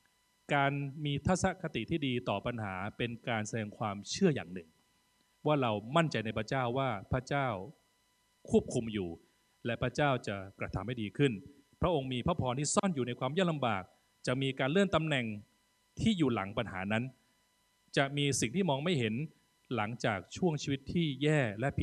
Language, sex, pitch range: Thai, male, 110-145 Hz